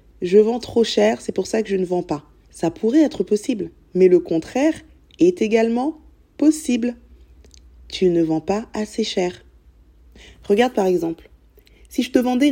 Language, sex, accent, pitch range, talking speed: French, female, French, 170-245 Hz, 170 wpm